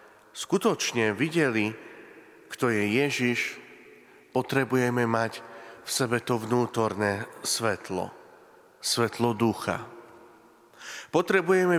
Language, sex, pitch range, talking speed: Slovak, male, 105-140 Hz, 75 wpm